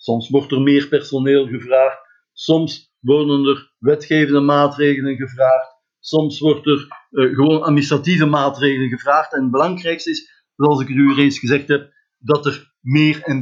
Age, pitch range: 50-69, 130-155 Hz